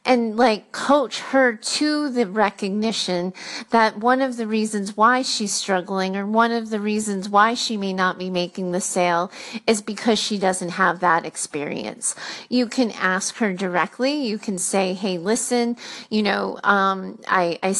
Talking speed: 170 wpm